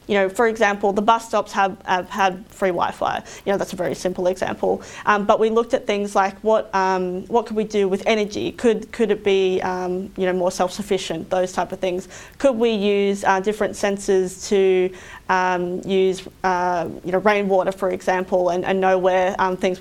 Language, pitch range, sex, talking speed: English, 185-205 Hz, female, 205 wpm